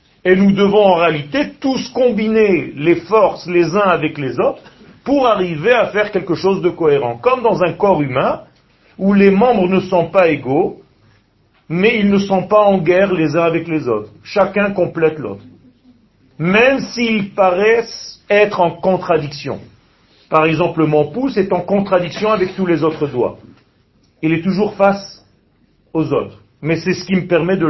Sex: male